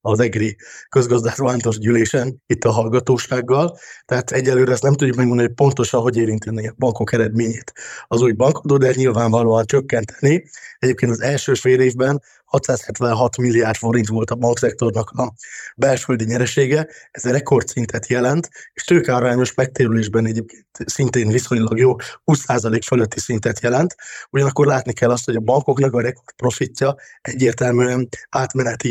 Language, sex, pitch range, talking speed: Hungarian, male, 115-135 Hz, 135 wpm